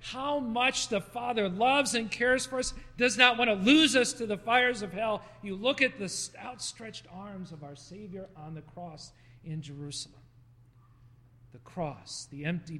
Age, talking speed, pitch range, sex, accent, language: 40-59, 180 wpm, 130-185 Hz, male, American, English